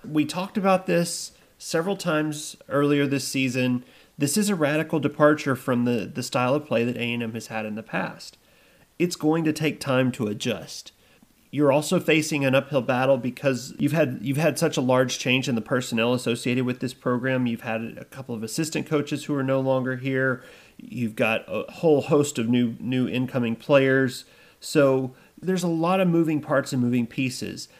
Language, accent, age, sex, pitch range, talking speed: English, American, 30-49, male, 120-150 Hz, 190 wpm